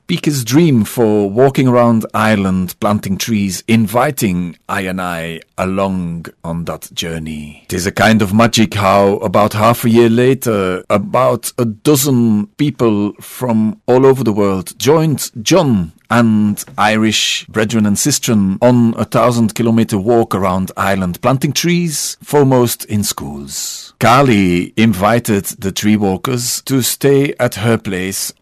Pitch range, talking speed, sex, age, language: 95-125 Hz, 135 wpm, male, 40-59, English